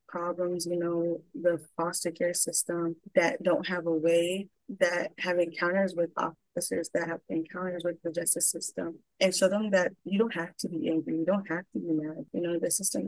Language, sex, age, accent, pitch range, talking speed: English, female, 20-39, American, 165-185 Hz, 200 wpm